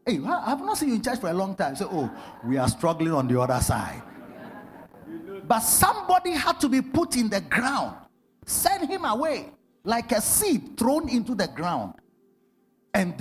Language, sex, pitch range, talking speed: English, male, 210-300 Hz, 185 wpm